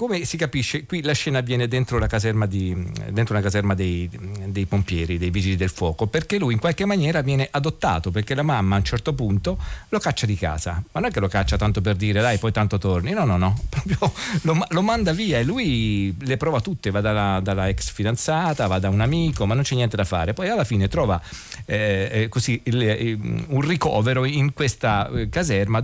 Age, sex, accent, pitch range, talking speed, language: 40-59, male, native, 100-140 Hz, 215 wpm, Italian